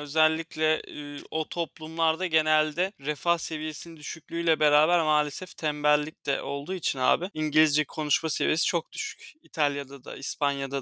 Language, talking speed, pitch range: Turkish, 120 wpm, 140-165 Hz